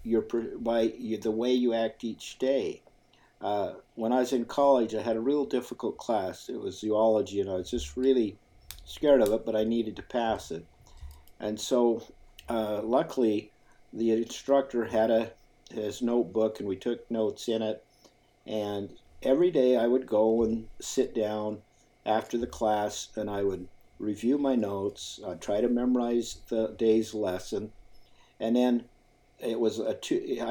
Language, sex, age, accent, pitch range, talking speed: English, male, 50-69, American, 110-130 Hz, 165 wpm